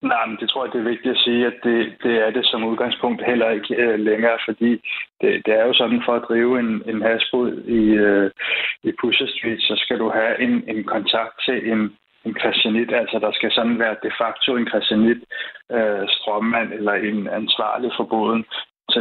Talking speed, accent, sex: 205 wpm, native, male